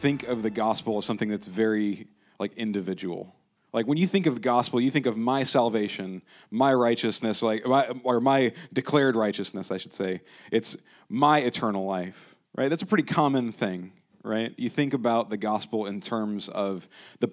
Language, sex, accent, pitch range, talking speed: English, male, American, 110-140 Hz, 185 wpm